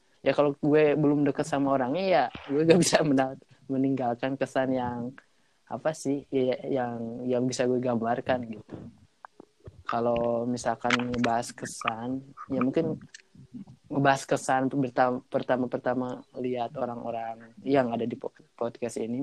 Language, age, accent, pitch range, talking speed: Indonesian, 20-39, native, 120-145 Hz, 130 wpm